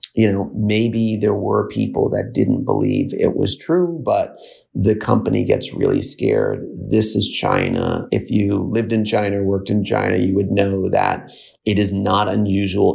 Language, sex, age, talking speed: English, male, 30-49, 170 wpm